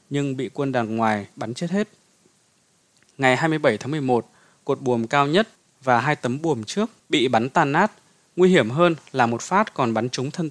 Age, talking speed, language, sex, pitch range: 20-39, 200 wpm, Vietnamese, male, 125-175 Hz